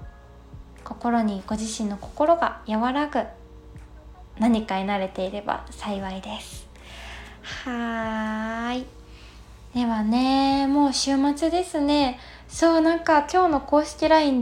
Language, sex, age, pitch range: Japanese, female, 20-39, 210-285 Hz